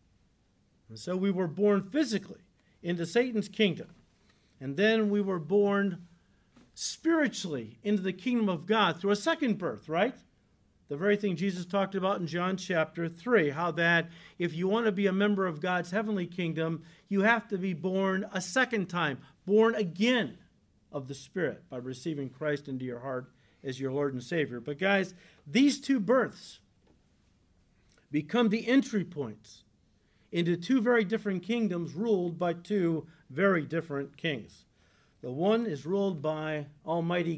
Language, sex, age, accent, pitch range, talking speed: English, male, 50-69, American, 140-200 Hz, 155 wpm